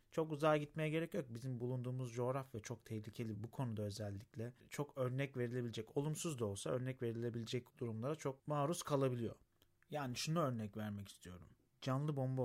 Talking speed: 155 wpm